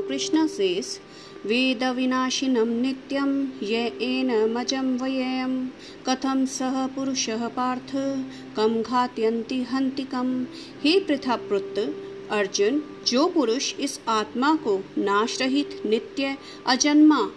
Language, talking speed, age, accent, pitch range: Hindi, 80 wpm, 50-69, native, 235-310 Hz